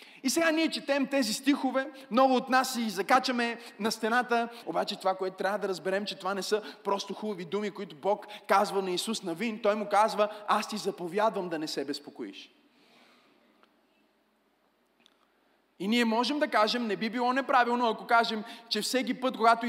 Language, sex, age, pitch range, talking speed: Bulgarian, male, 30-49, 225-290 Hz, 175 wpm